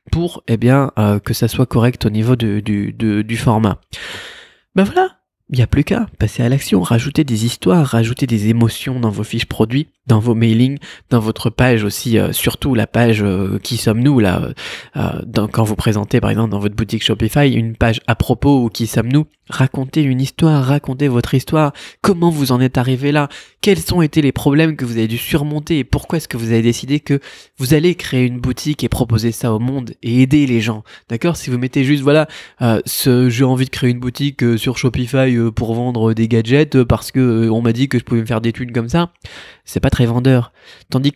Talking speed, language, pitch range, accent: 225 wpm, French, 115-140 Hz, French